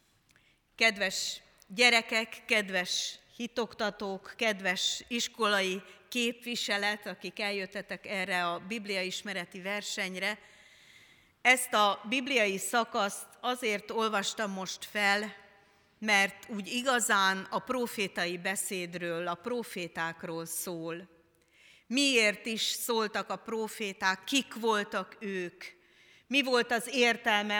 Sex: female